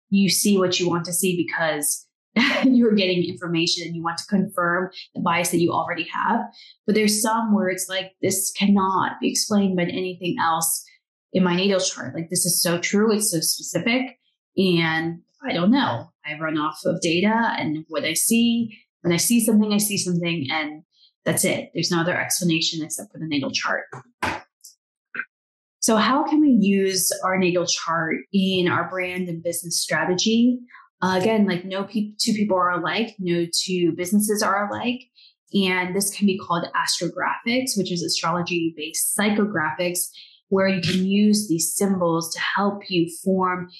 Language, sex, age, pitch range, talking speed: English, female, 20-39, 170-210 Hz, 175 wpm